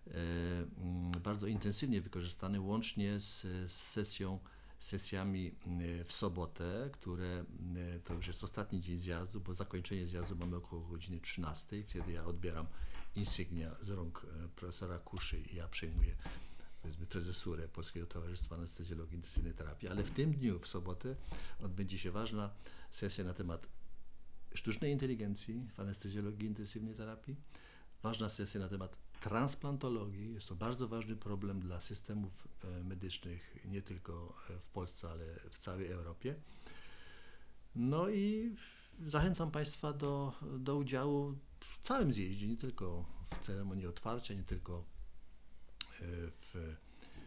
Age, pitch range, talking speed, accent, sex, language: 50-69, 85-105 Hz, 125 wpm, native, male, Polish